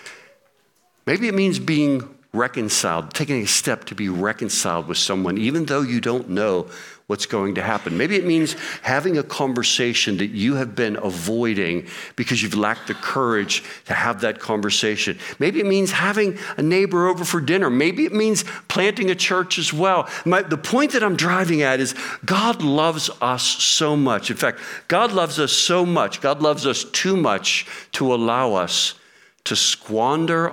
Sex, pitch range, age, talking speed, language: male, 100-165 Hz, 60-79, 175 wpm, English